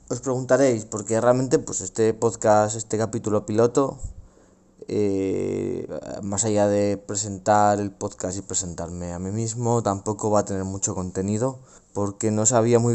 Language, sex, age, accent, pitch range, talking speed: Spanish, male, 20-39, Spanish, 95-115 Hz, 150 wpm